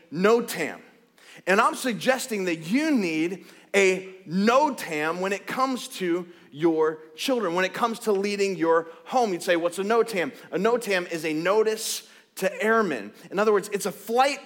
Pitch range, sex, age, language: 175-225 Hz, male, 30-49, English